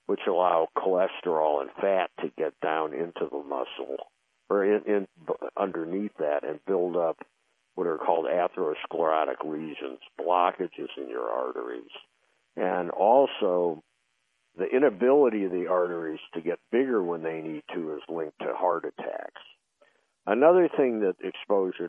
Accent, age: American, 60-79